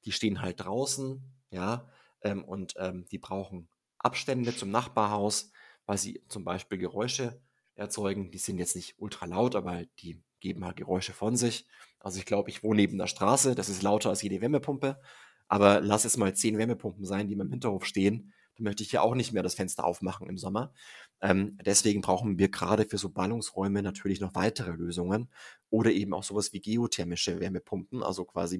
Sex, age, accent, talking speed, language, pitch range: male, 30-49, German, 190 wpm, German, 95-110 Hz